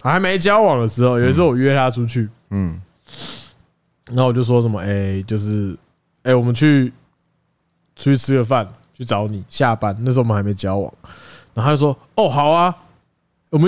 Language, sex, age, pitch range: Chinese, male, 20-39, 120-170 Hz